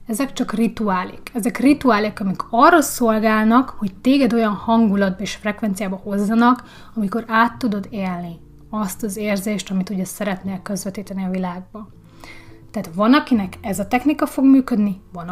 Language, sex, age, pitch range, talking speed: Hungarian, female, 30-49, 195-250 Hz, 145 wpm